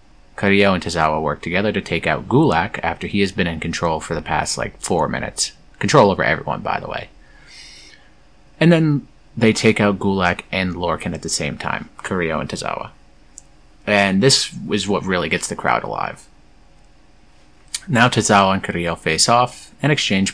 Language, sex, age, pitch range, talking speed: English, male, 30-49, 90-115 Hz, 175 wpm